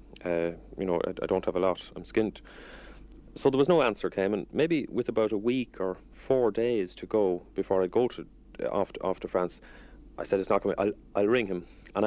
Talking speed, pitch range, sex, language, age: 240 wpm, 95-110 Hz, male, English, 40-59